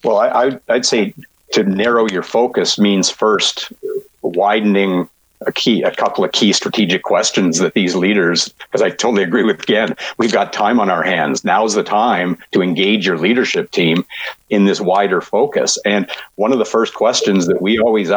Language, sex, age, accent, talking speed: English, male, 50-69, American, 180 wpm